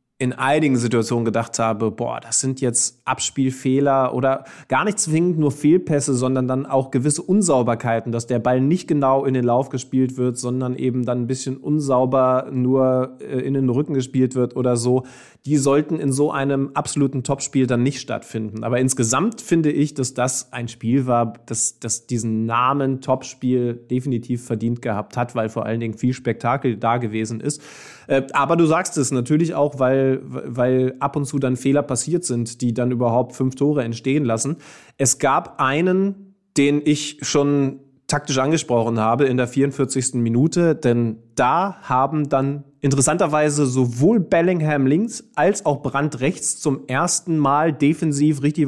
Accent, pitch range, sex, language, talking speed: German, 125-145 Hz, male, German, 165 wpm